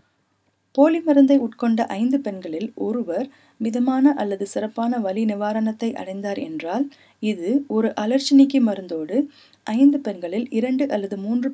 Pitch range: 190-265 Hz